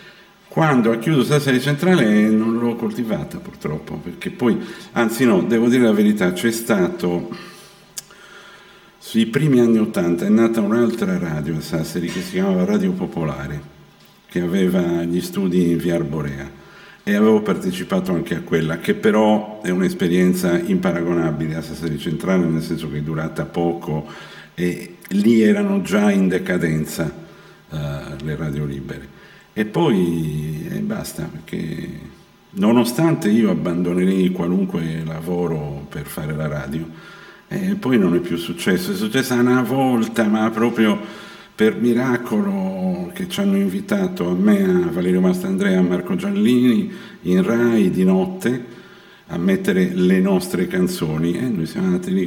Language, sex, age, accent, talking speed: Italian, male, 50-69, native, 145 wpm